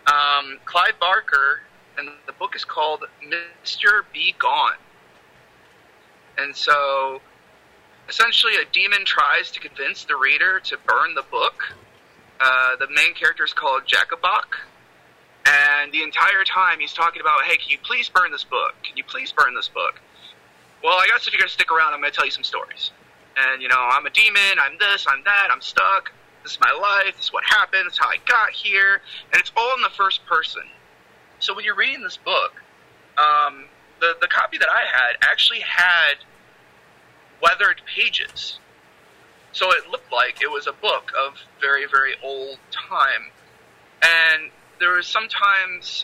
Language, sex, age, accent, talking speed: English, male, 30-49, American, 175 wpm